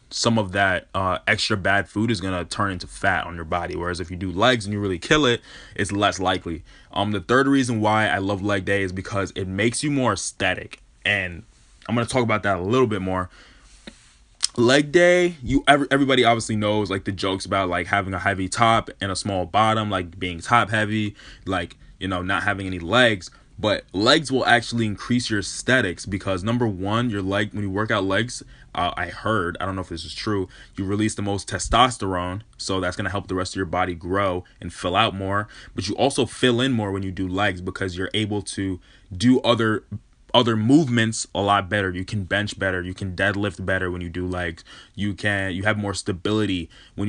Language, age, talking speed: English, 20-39, 220 wpm